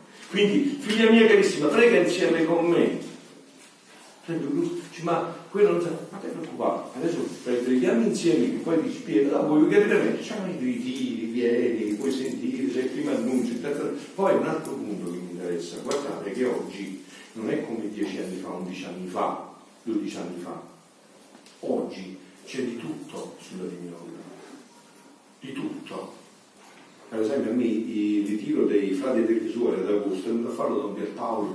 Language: Italian